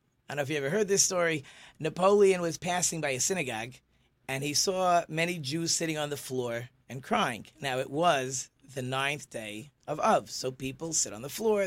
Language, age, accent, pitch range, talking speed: English, 30-49, American, 135-190 Hz, 205 wpm